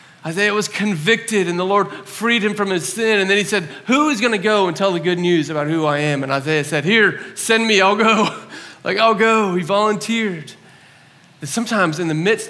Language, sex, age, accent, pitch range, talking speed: English, male, 30-49, American, 135-185 Hz, 225 wpm